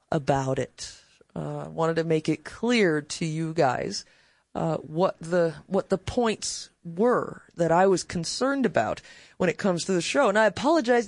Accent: American